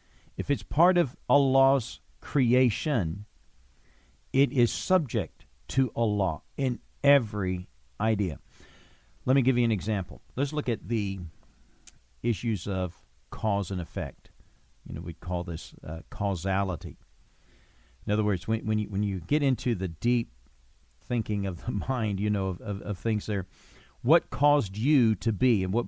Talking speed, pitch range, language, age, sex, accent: 155 wpm, 85-120 Hz, English, 50-69, male, American